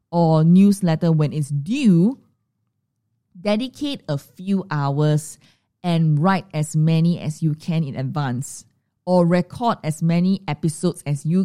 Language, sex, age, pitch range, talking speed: English, female, 20-39, 150-185 Hz, 130 wpm